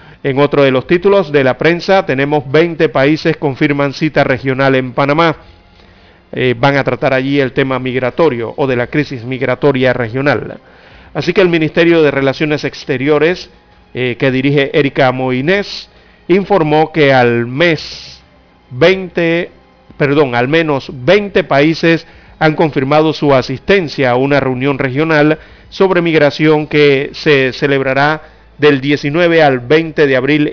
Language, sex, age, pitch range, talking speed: Spanish, male, 40-59, 130-155 Hz, 140 wpm